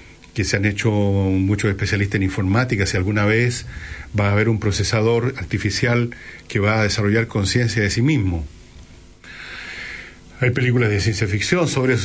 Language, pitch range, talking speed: Spanish, 95-120 Hz, 160 wpm